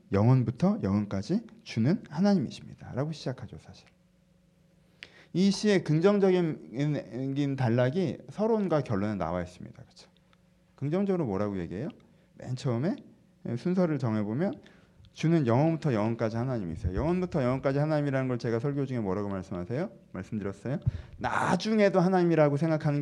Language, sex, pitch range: Korean, male, 125-195 Hz